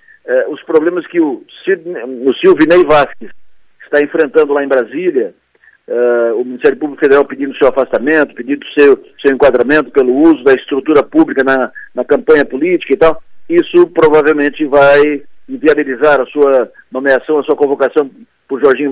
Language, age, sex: Portuguese, 50-69, male